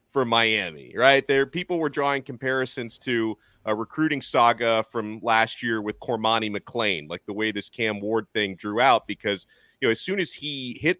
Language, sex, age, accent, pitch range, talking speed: English, male, 30-49, American, 110-145 Hz, 190 wpm